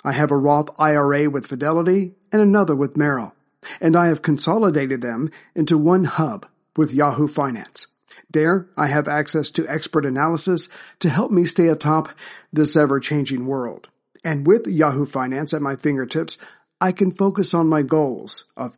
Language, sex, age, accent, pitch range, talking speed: English, male, 50-69, American, 140-165 Hz, 165 wpm